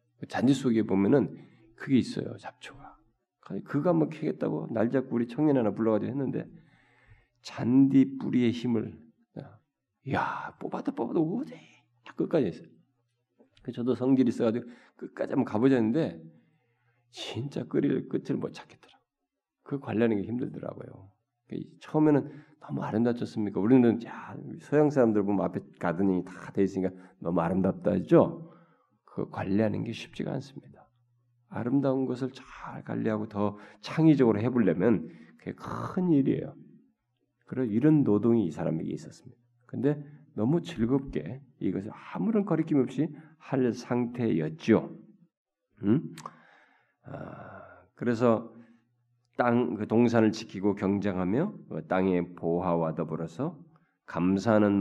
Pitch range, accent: 105-135 Hz, native